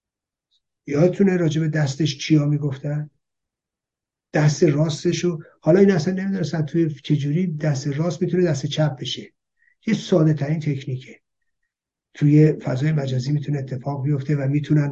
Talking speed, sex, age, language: 135 wpm, male, 50-69, Persian